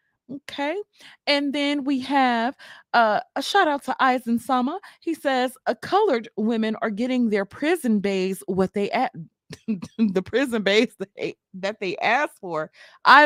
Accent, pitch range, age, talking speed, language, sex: American, 195-315 Hz, 20-39, 155 wpm, English, female